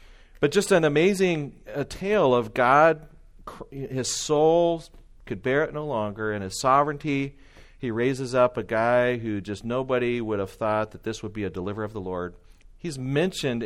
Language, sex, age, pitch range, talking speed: English, male, 40-59, 100-130 Hz, 175 wpm